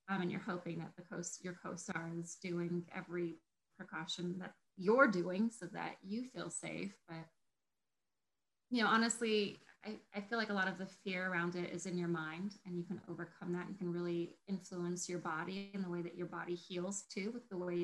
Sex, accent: female, American